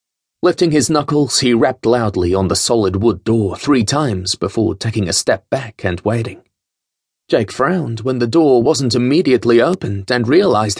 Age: 30-49